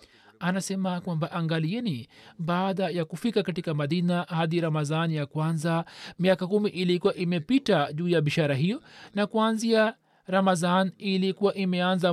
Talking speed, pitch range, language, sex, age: 125 wpm, 155-190 Hz, Swahili, male, 40-59